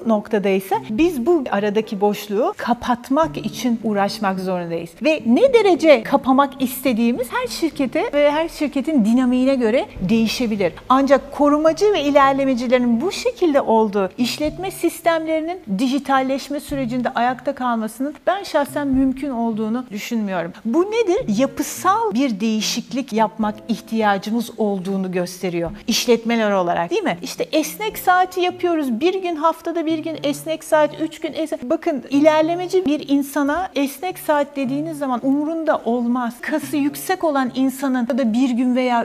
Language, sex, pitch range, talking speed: Turkish, female, 230-305 Hz, 135 wpm